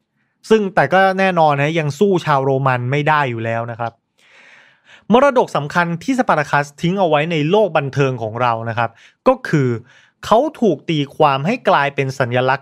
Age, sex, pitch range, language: 30-49, male, 135-185 Hz, Thai